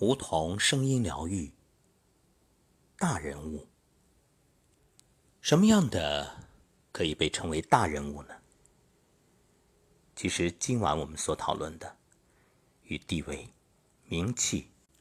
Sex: male